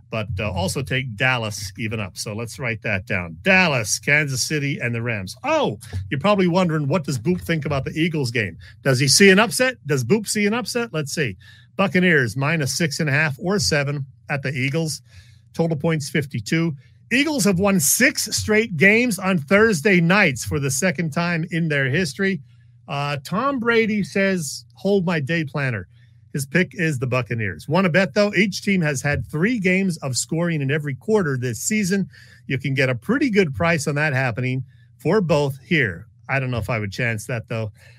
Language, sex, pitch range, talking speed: English, male, 120-170 Hz, 190 wpm